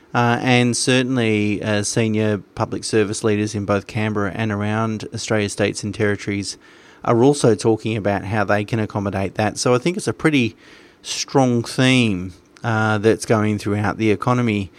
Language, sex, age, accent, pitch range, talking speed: English, male, 30-49, Australian, 105-120 Hz, 160 wpm